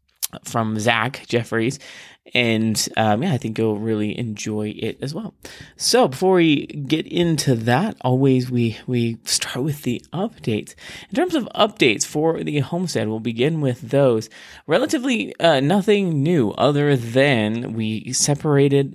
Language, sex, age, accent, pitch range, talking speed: English, male, 20-39, American, 110-150 Hz, 145 wpm